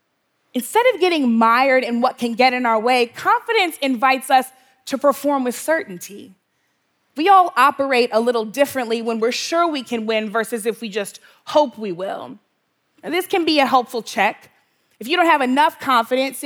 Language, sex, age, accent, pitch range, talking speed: English, female, 20-39, American, 225-285 Hz, 180 wpm